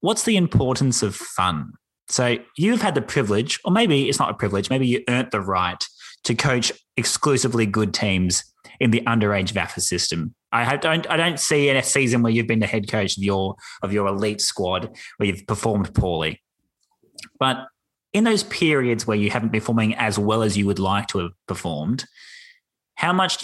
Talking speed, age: 185 wpm, 20-39